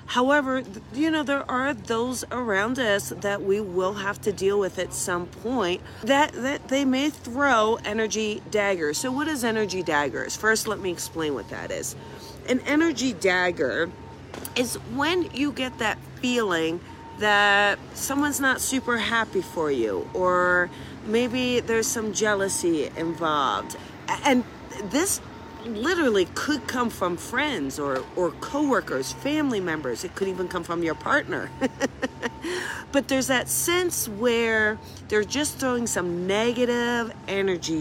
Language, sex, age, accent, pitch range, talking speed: English, female, 40-59, American, 180-255 Hz, 140 wpm